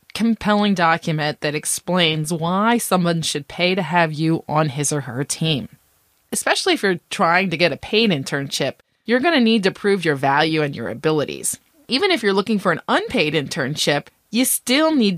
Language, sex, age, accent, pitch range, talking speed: English, female, 30-49, American, 165-235 Hz, 185 wpm